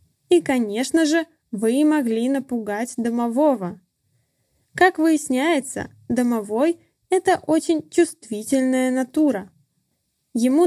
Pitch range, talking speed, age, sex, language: 215-295 Hz, 85 wpm, 10-29, female, Russian